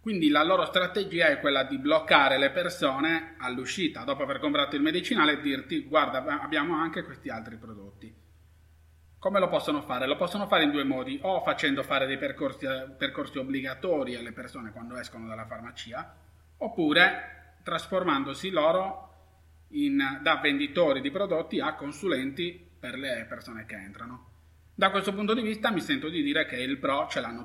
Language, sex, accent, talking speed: Italian, male, native, 165 wpm